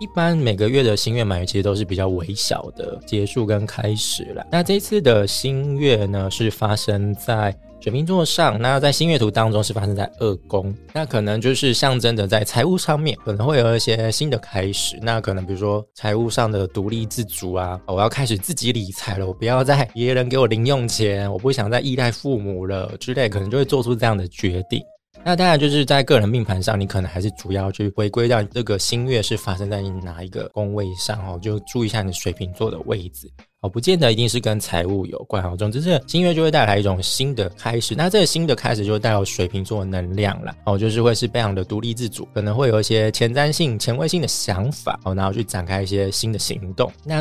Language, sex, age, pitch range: Chinese, male, 20-39, 100-130 Hz